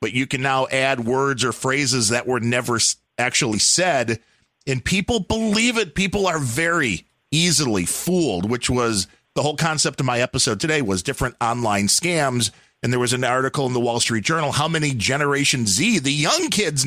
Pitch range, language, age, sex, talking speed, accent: 120-160 Hz, English, 40-59, male, 185 wpm, American